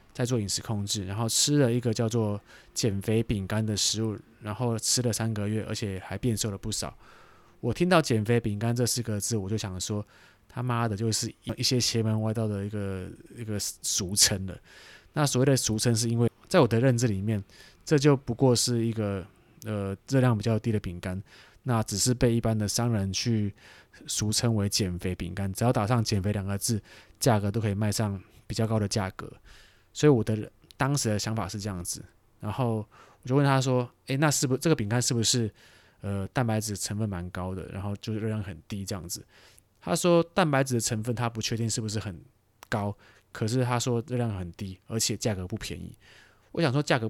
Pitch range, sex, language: 105-125 Hz, male, Chinese